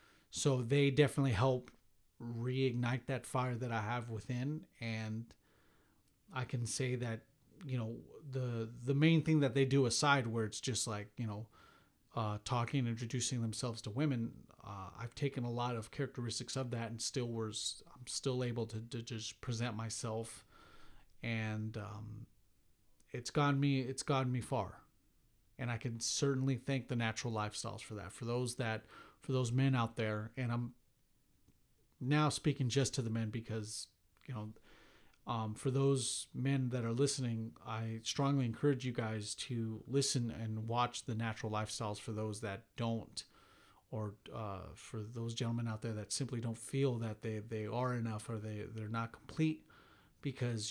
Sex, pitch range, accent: male, 110-130 Hz, American